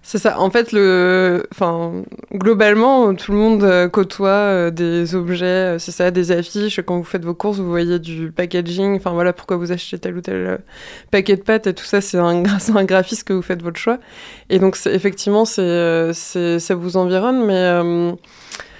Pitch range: 175-205 Hz